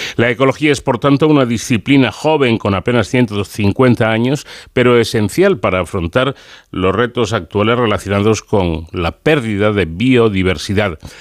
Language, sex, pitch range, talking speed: Spanish, male, 105-135 Hz, 135 wpm